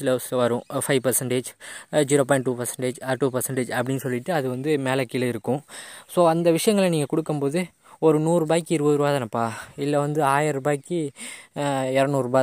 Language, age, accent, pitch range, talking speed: Tamil, 20-39, native, 130-155 Hz, 155 wpm